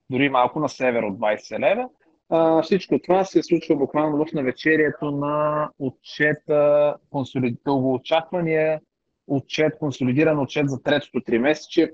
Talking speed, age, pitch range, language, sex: 120 wpm, 30-49, 130-160 Hz, Bulgarian, male